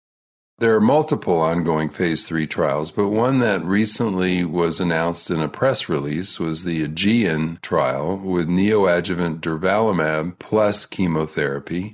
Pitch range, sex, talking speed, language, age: 80-100 Hz, male, 130 wpm, English, 50-69